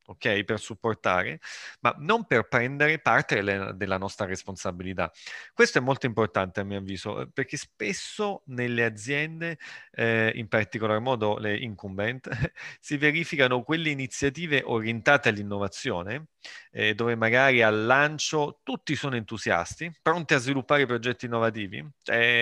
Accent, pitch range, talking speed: native, 105-140 Hz, 130 wpm